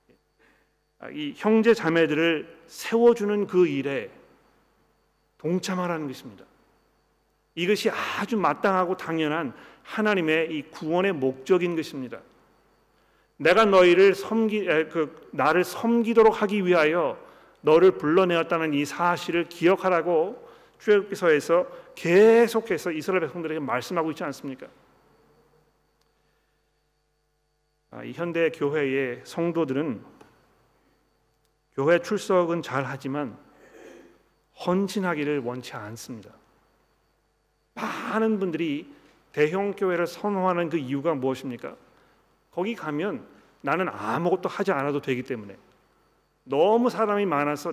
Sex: male